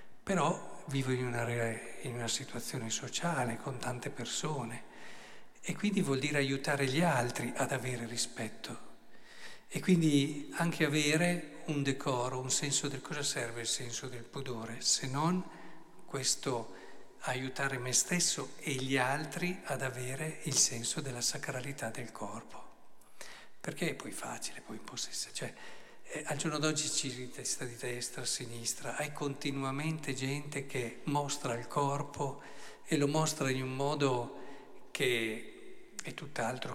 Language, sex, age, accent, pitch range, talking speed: Italian, male, 50-69, native, 120-150 Hz, 140 wpm